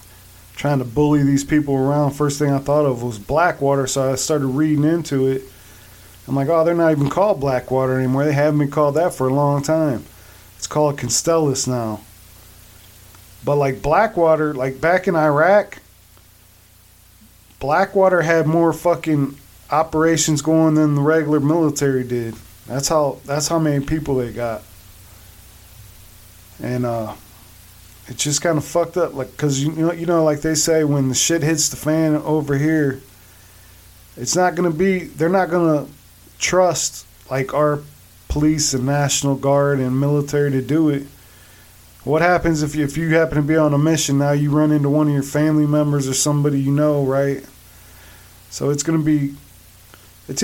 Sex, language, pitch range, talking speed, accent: male, English, 110-155 Hz, 170 wpm, American